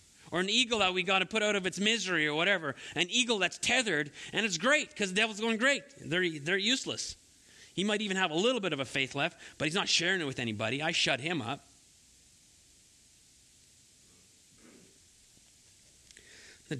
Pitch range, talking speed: 150-205 Hz, 185 wpm